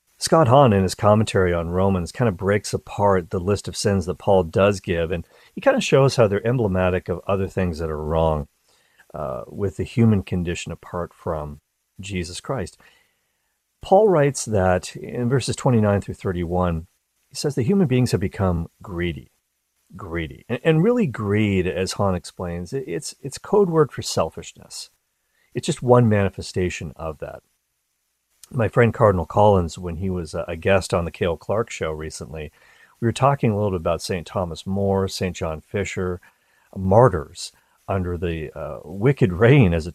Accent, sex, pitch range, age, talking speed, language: American, male, 90-115 Hz, 40-59, 170 wpm, English